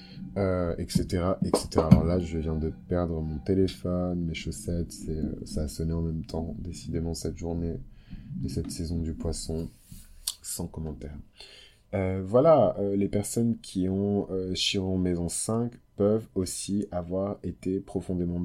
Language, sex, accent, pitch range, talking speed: French, male, French, 85-95 Hz, 155 wpm